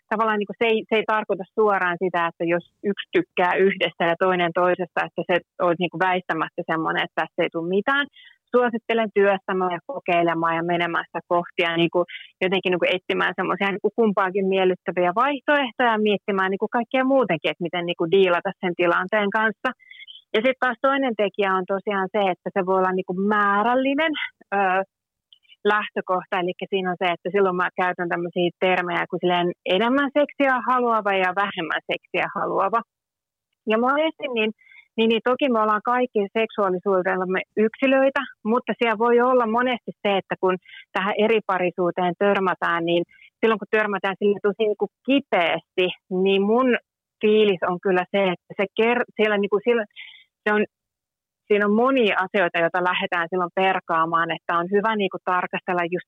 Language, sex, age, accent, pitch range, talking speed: Finnish, female, 30-49, native, 180-220 Hz, 160 wpm